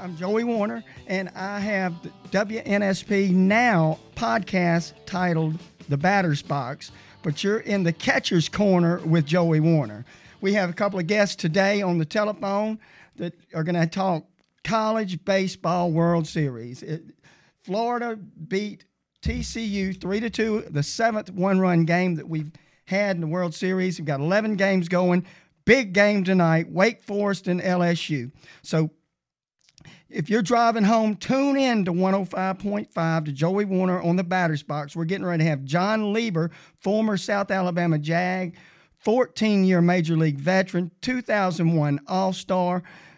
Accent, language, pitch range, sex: American, English, 160-195 Hz, male